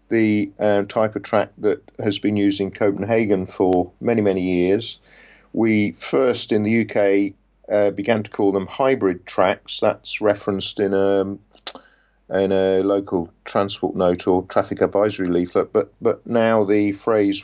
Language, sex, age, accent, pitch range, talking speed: English, male, 50-69, British, 100-115 Hz, 150 wpm